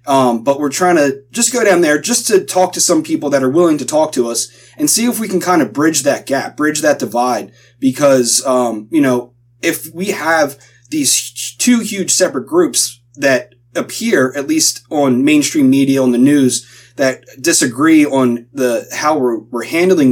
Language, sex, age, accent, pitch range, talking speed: English, male, 30-49, American, 125-170 Hz, 195 wpm